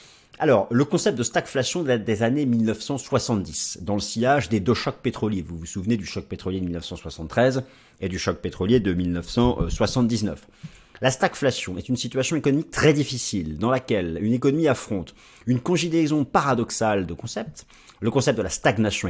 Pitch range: 95-140 Hz